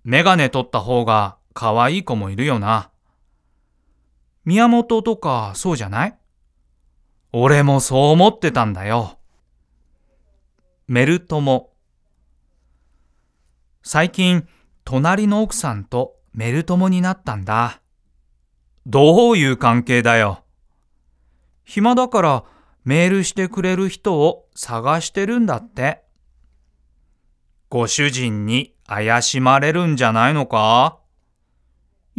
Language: Chinese